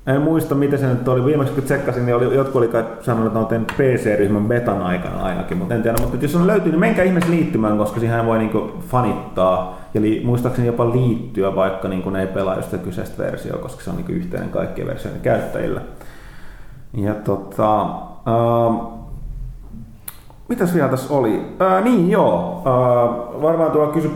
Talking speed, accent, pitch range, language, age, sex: 170 wpm, native, 110-145 Hz, Finnish, 30-49, male